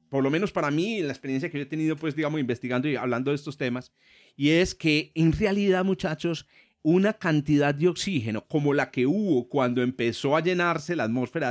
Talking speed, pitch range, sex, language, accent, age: 205 wpm, 125-170 Hz, male, Spanish, Colombian, 30-49